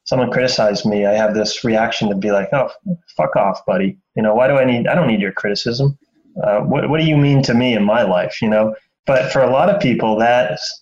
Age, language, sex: 30-49, English, male